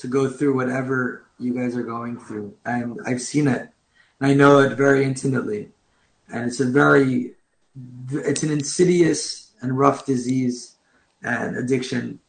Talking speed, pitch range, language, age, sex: 150 wpm, 135-170 Hz, English, 20-39, male